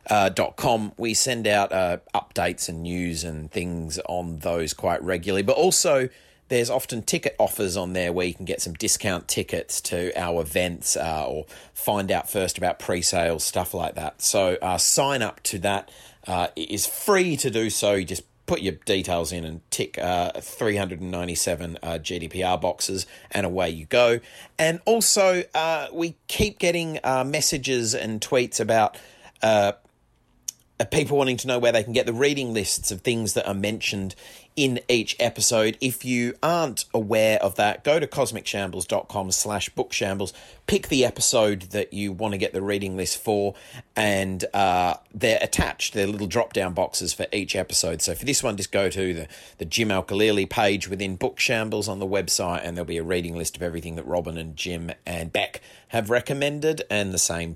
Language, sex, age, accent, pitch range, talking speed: English, male, 30-49, Australian, 90-120 Hz, 185 wpm